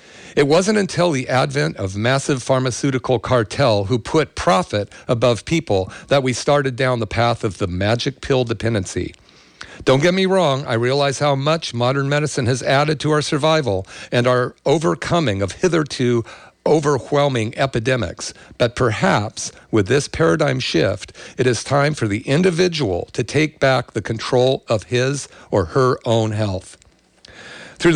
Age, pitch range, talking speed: 50-69, 115-150 Hz, 150 wpm